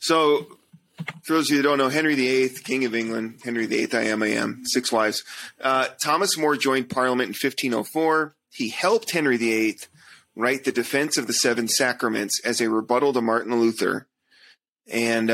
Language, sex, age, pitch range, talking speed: English, male, 30-49, 115-145 Hz, 180 wpm